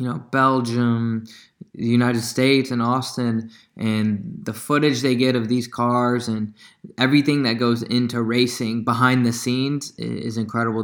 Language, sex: English, male